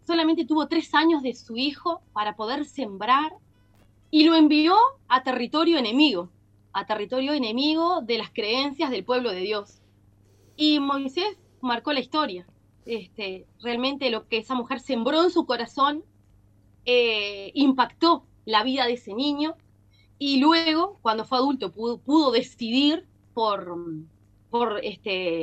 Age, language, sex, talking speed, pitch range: 20-39, Spanish, female, 140 wpm, 220-325 Hz